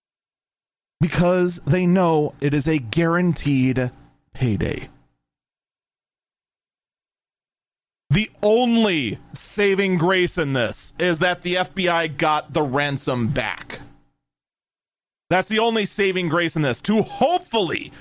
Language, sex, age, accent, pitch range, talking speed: English, male, 30-49, American, 140-180 Hz, 105 wpm